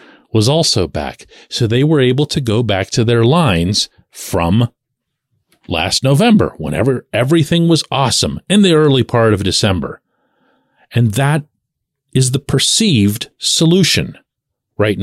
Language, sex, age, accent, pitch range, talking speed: English, male, 40-59, American, 100-155 Hz, 130 wpm